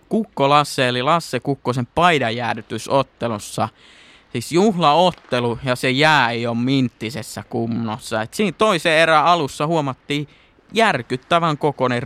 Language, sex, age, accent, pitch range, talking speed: Finnish, male, 20-39, native, 115-150 Hz, 115 wpm